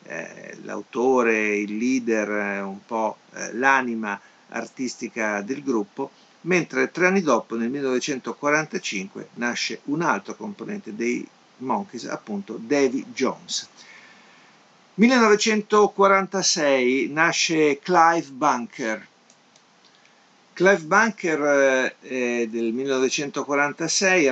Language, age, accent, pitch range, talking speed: Italian, 50-69, native, 110-140 Hz, 80 wpm